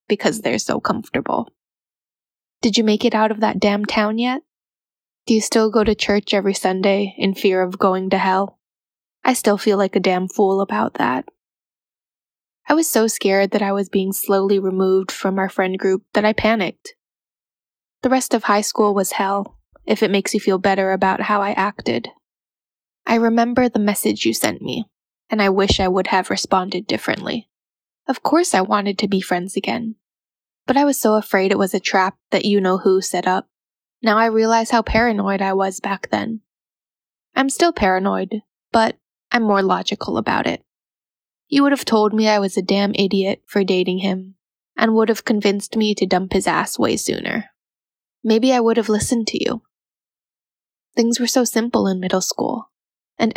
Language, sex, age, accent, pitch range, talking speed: English, female, 10-29, American, 195-225 Hz, 185 wpm